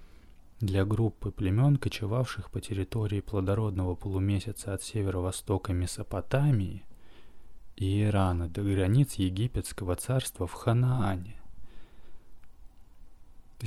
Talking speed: 90 wpm